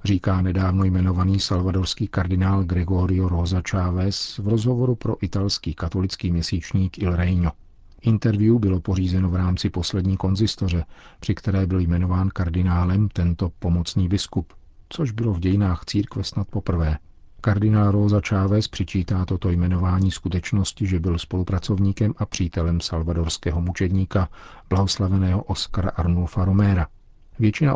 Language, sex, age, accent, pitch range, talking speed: Czech, male, 40-59, native, 90-100 Hz, 125 wpm